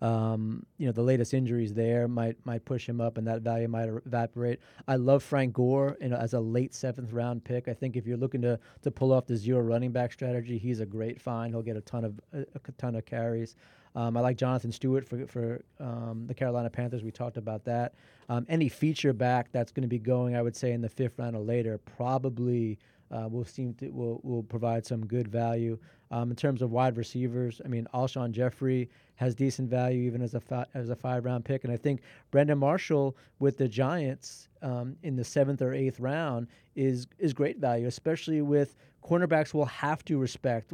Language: English